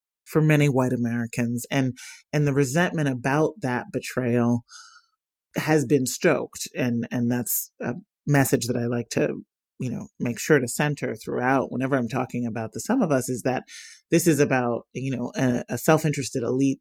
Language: English